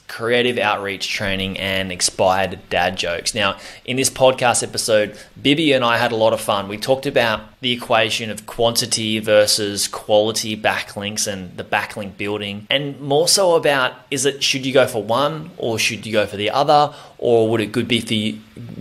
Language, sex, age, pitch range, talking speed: English, male, 20-39, 105-130 Hz, 190 wpm